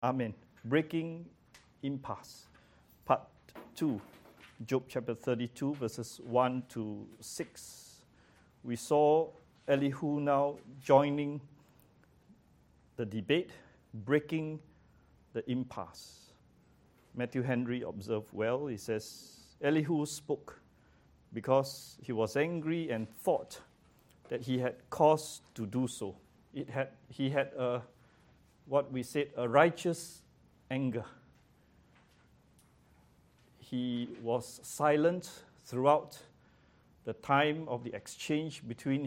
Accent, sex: Malaysian, male